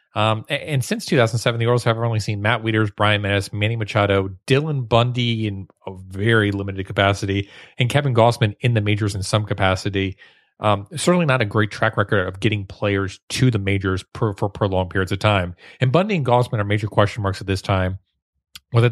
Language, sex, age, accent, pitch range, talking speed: English, male, 30-49, American, 100-120 Hz, 195 wpm